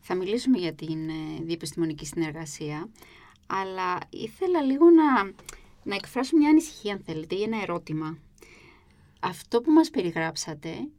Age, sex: 20-39, female